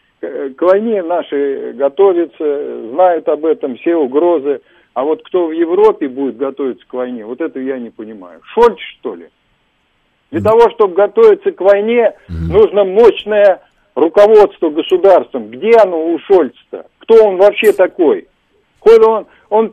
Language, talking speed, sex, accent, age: Russian, 145 wpm, male, native, 50-69